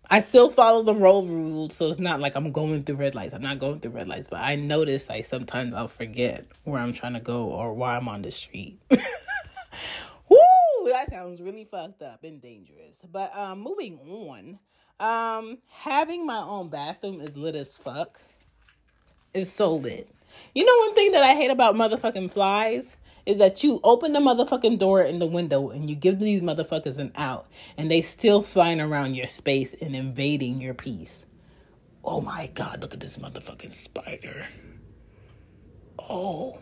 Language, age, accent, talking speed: English, 30-49, American, 180 wpm